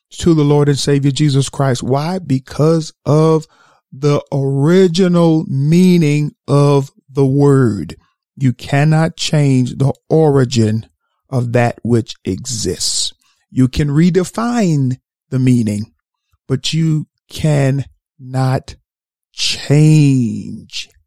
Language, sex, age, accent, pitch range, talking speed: English, male, 40-59, American, 130-165 Hz, 100 wpm